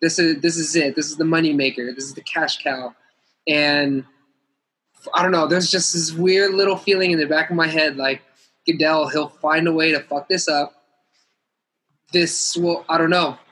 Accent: American